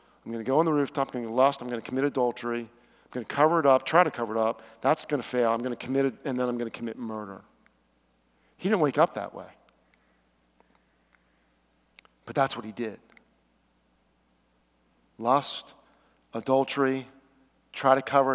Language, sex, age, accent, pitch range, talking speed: English, male, 50-69, American, 95-135 Hz, 195 wpm